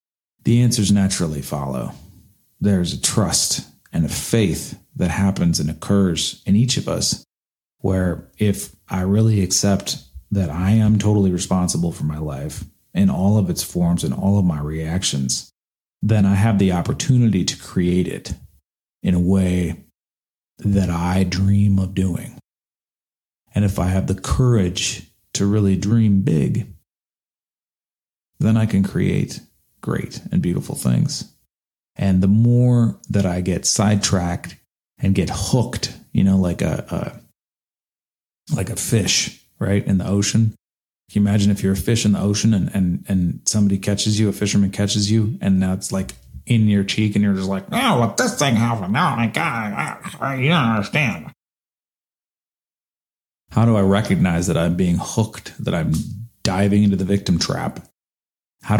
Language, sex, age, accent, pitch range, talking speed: English, male, 40-59, American, 90-105 Hz, 160 wpm